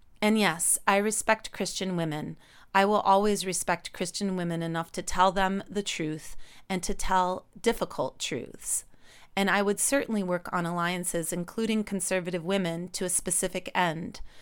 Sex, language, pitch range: female, English, 170-205 Hz